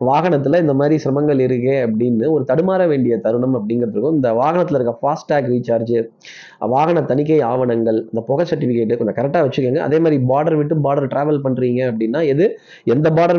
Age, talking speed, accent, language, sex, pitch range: 20-39, 160 wpm, native, Tamil, male, 125-165 Hz